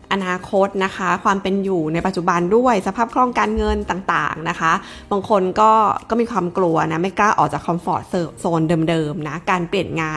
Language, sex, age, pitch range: Thai, female, 20-39, 175-215 Hz